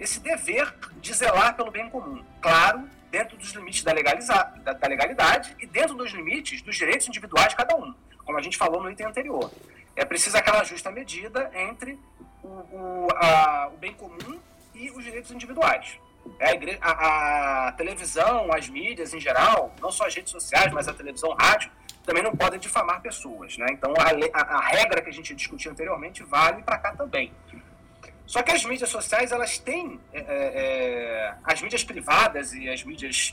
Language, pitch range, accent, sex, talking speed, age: Portuguese, 160-260 Hz, Brazilian, male, 175 wpm, 30-49